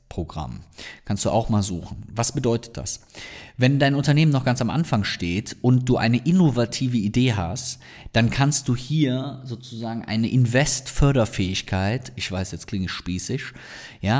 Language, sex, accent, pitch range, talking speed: German, male, German, 105-130 Hz, 155 wpm